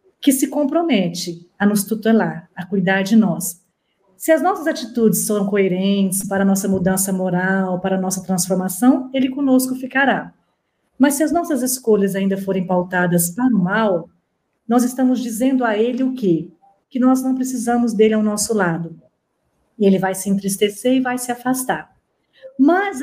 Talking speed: 165 wpm